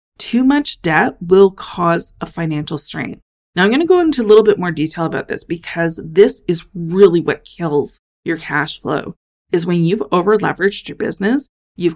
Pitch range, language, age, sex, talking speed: 160-200 Hz, English, 30-49, female, 185 wpm